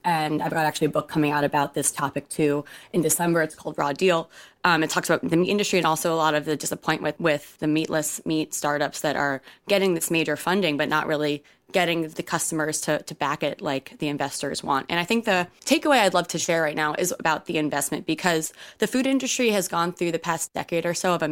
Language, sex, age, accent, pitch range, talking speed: English, female, 20-39, American, 160-200 Hz, 245 wpm